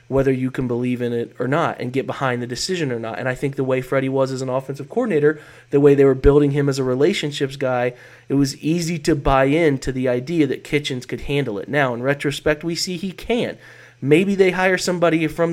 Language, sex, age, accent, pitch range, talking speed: English, male, 30-49, American, 130-160 Hz, 235 wpm